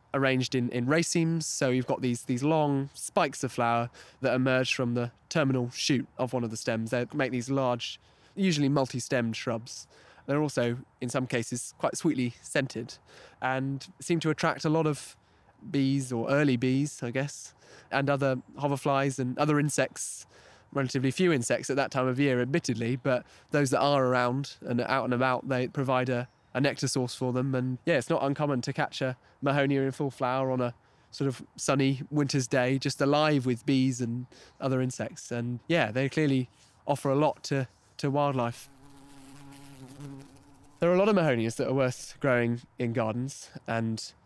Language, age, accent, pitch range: English, 20-39, British, 120-140 Hz